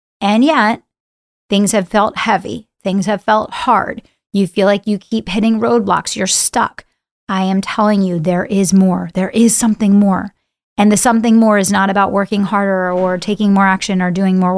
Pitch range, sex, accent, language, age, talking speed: 185-210 Hz, female, American, English, 30-49, 190 wpm